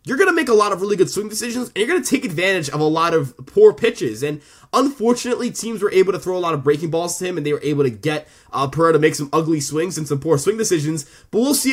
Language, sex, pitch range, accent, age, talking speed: English, male, 155-215 Hz, American, 20-39, 295 wpm